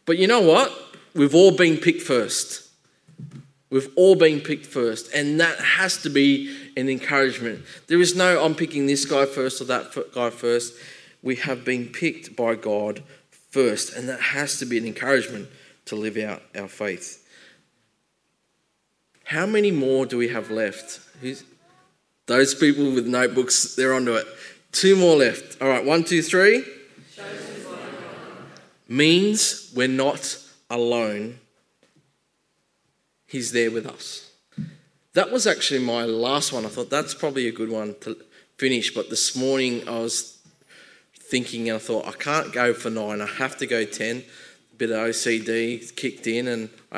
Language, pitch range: English, 115-145 Hz